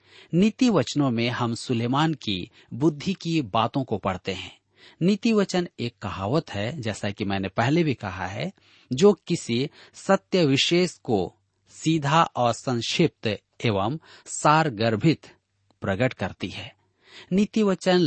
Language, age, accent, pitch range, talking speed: Hindi, 40-59, native, 105-155 Hz, 130 wpm